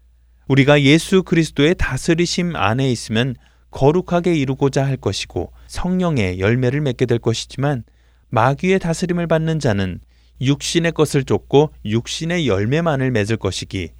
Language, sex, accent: Korean, male, native